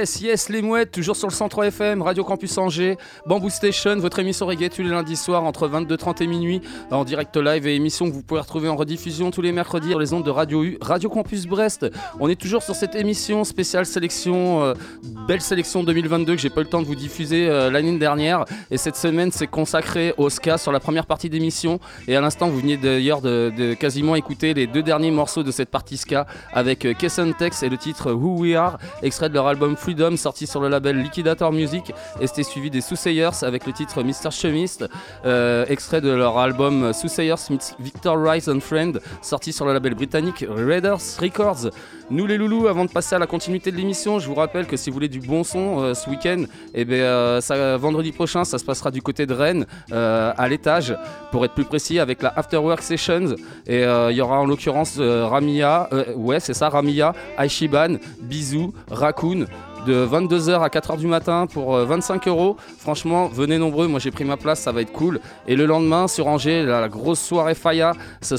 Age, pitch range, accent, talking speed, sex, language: 20-39, 140-175 Hz, French, 215 wpm, male, French